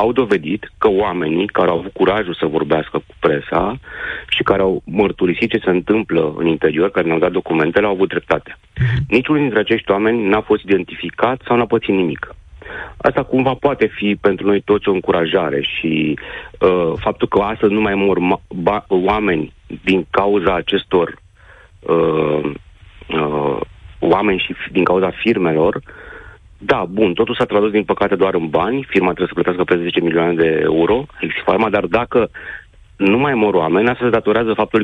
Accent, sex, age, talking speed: native, male, 40-59, 165 wpm